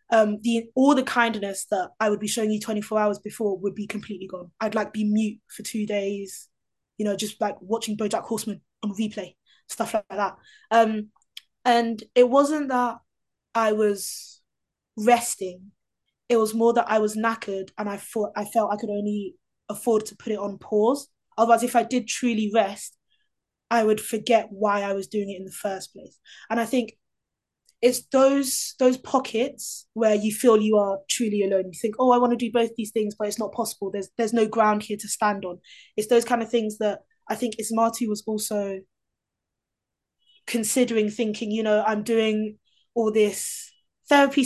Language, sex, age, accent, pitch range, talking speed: English, female, 20-39, British, 210-235 Hz, 190 wpm